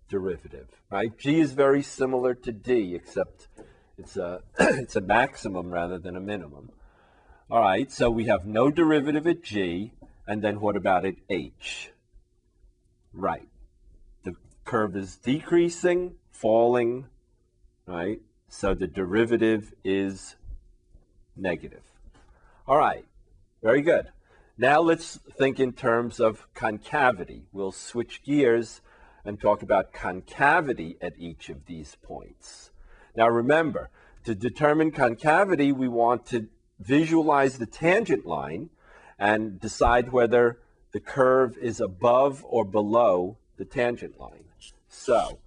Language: English